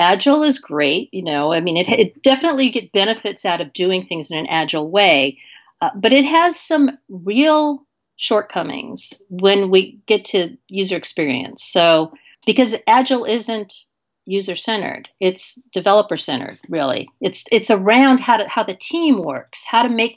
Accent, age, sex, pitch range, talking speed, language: American, 50-69, female, 185-260 Hz, 165 wpm, English